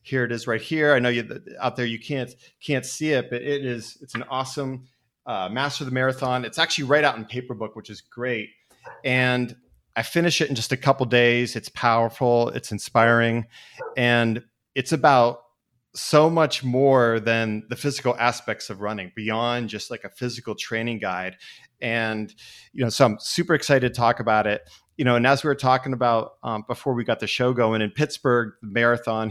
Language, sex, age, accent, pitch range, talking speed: English, male, 30-49, American, 115-130 Hz, 205 wpm